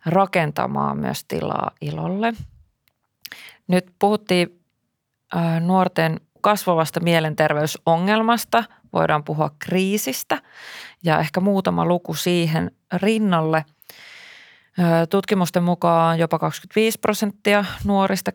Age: 30-49